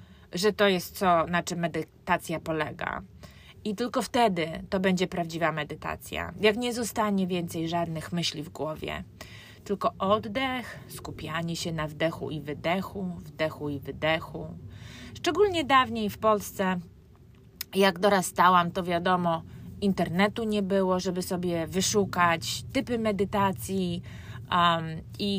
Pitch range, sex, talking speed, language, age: 165-220 Hz, female, 120 wpm, English, 20-39